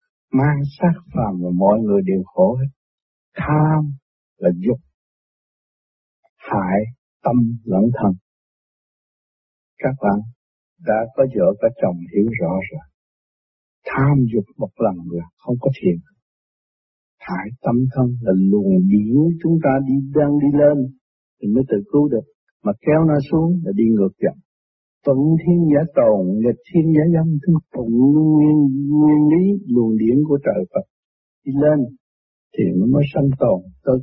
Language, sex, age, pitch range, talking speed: Vietnamese, male, 60-79, 100-145 Hz, 145 wpm